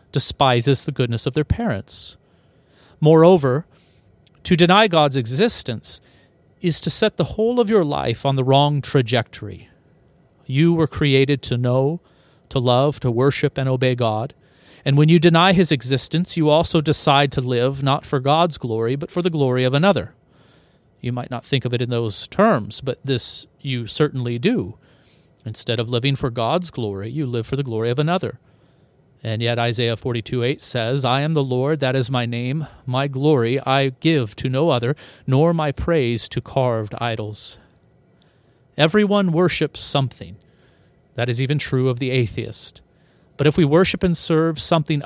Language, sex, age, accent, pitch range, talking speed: English, male, 40-59, American, 120-155 Hz, 170 wpm